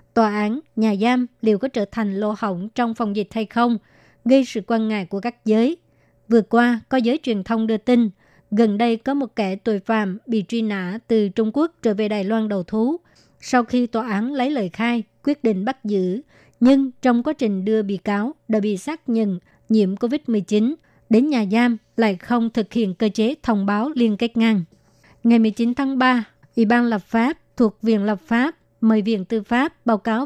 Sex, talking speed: male, 210 wpm